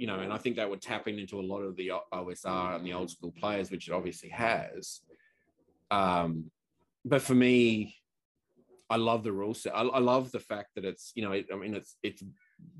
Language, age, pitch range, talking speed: English, 30-49, 90-115 Hz, 200 wpm